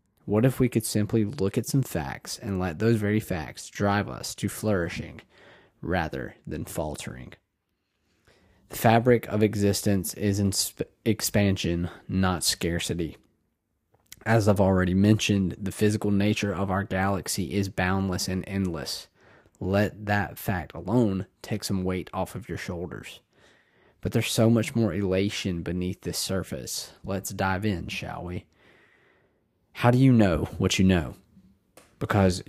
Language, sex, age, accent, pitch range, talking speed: English, male, 20-39, American, 90-105 Hz, 145 wpm